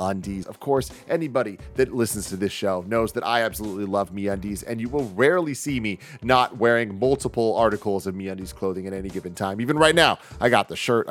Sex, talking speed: male, 220 wpm